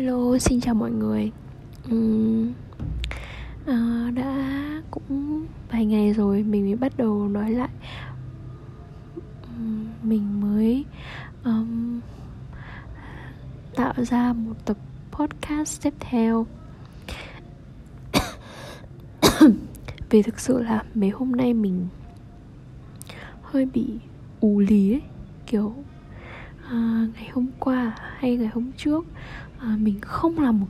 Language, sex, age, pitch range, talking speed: Vietnamese, female, 10-29, 200-245 Hz, 105 wpm